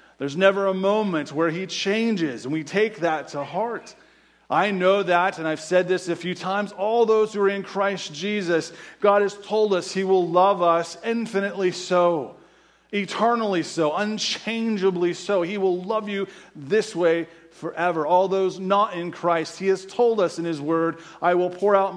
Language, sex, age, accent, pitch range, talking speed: English, male, 30-49, American, 160-195 Hz, 185 wpm